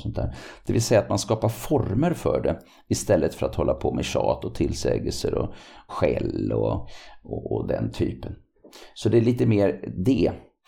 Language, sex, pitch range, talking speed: Swedish, male, 85-125 Hz, 185 wpm